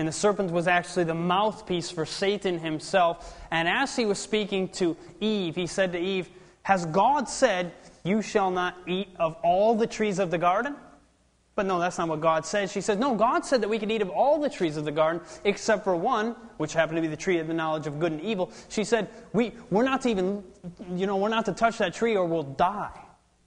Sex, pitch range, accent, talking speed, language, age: male, 170-225 Hz, American, 220 wpm, English, 20-39